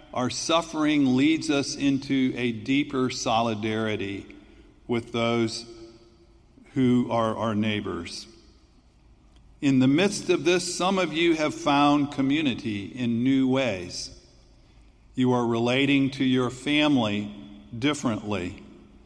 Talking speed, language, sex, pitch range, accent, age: 110 wpm, English, male, 110-140 Hz, American, 50-69